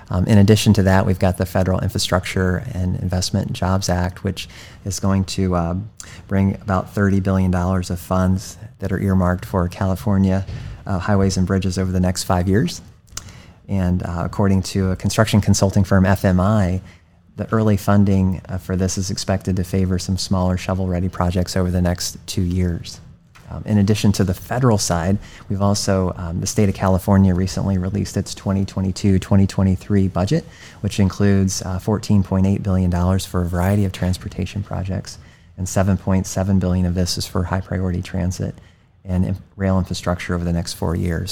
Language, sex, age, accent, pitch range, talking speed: English, male, 30-49, American, 90-100 Hz, 165 wpm